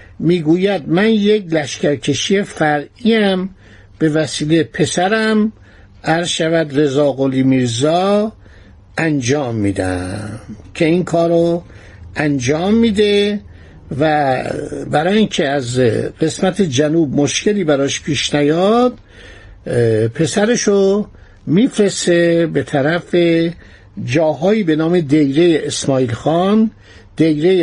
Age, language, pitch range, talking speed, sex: 60-79, Persian, 130-185 Hz, 85 wpm, male